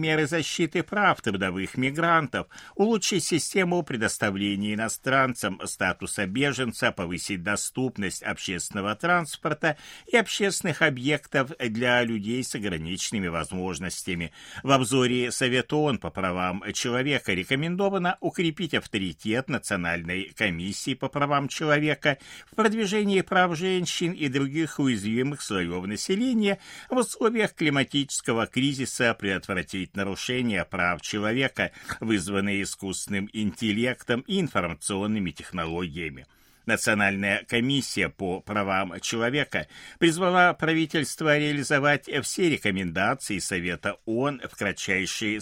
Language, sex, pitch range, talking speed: Russian, male, 100-160 Hz, 100 wpm